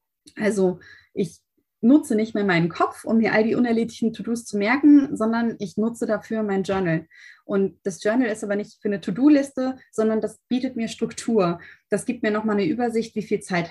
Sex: female